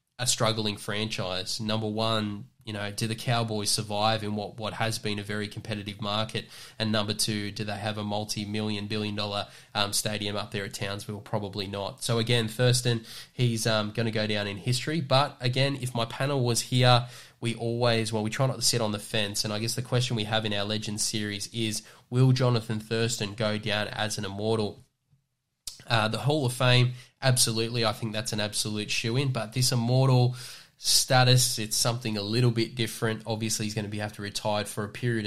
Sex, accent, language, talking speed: male, Australian, English, 200 wpm